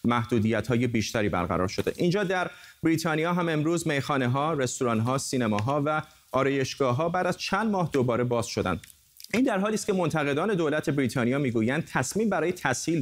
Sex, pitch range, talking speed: male, 125-155 Hz, 150 wpm